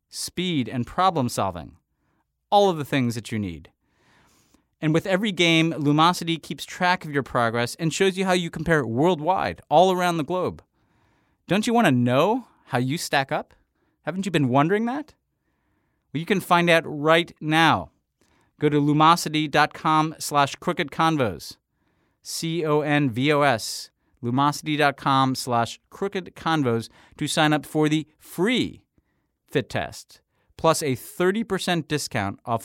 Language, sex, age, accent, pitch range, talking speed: English, male, 40-59, American, 120-160 Hz, 135 wpm